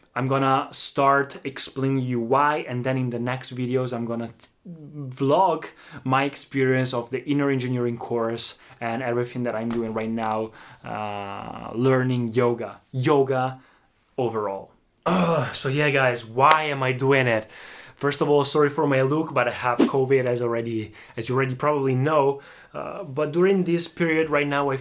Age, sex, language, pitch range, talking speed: 20-39, male, Italian, 120-140 Hz, 165 wpm